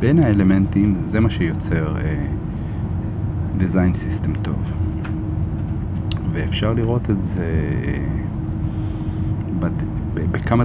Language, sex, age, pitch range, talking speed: Hebrew, male, 40-59, 90-105 Hz, 85 wpm